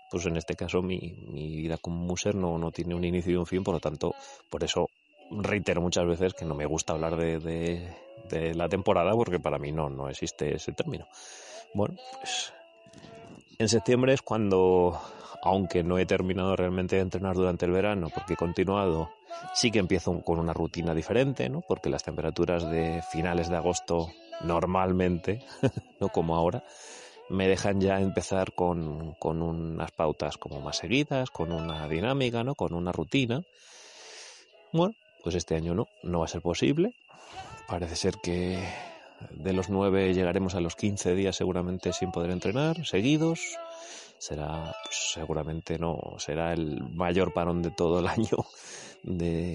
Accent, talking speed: Spanish, 165 wpm